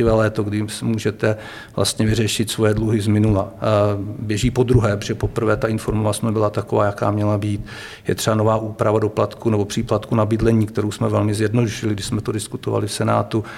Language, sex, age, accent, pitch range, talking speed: Czech, male, 50-69, native, 105-115 Hz, 170 wpm